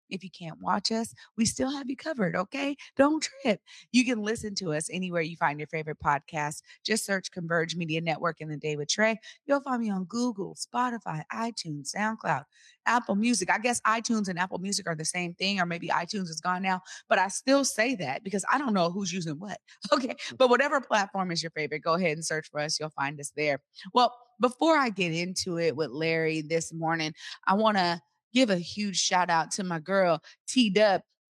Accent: American